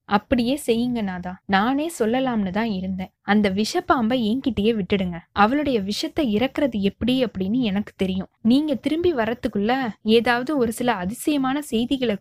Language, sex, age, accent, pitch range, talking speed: Tamil, female, 20-39, native, 210-275 Hz, 125 wpm